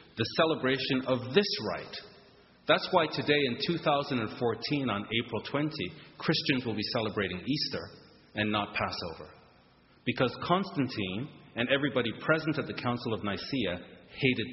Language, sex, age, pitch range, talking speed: English, male, 40-59, 100-145 Hz, 130 wpm